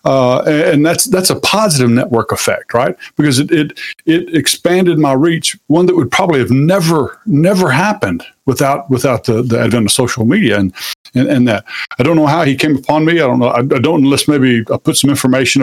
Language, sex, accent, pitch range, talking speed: English, male, American, 115-140 Hz, 215 wpm